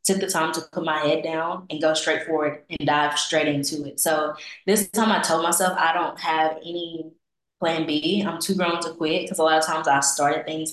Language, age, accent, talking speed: English, 20-39, American, 235 wpm